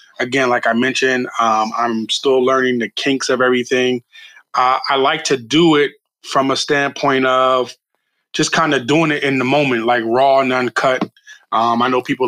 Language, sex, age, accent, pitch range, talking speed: English, male, 20-39, American, 120-135 Hz, 185 wpm